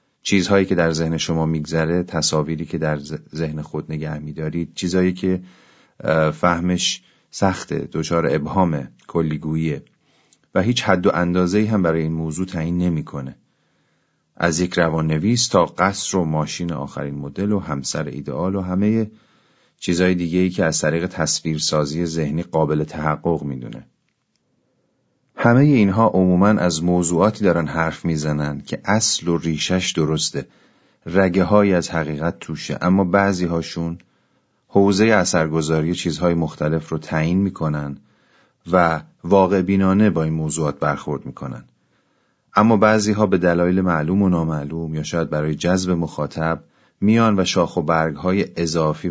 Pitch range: 80-95 Hz